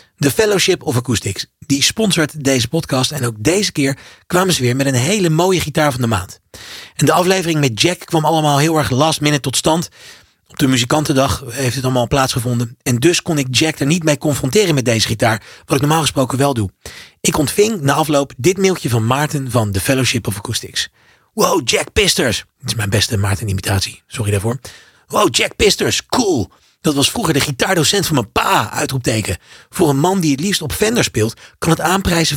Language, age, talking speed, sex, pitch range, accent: Dutch, 40-59, 200 wpm, male, 125-170 Hz, Dutch